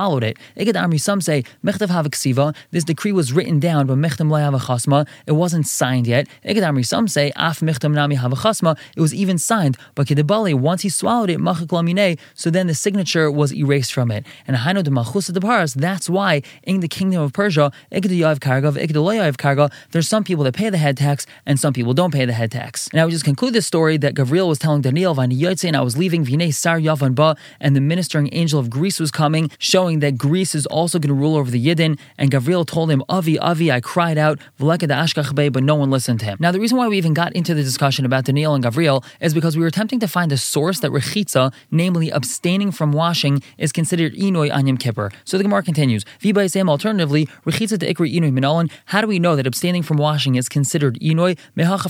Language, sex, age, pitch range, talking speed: English, male, 20-39, 140-175 Hz, 190 wpm